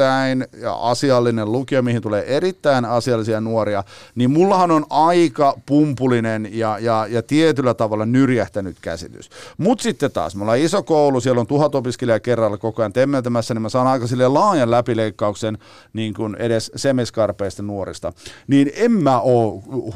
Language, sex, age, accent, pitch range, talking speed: Finnish, male, 50-69, native, 115-155 Hz, 150 wpm